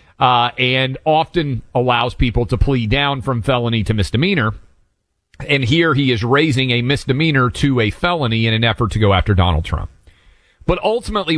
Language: English